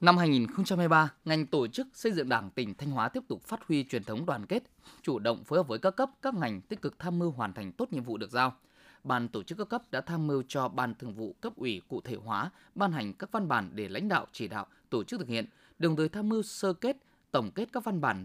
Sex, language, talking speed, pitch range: male, Vietnamese, 265 wpm, 125-195 Hz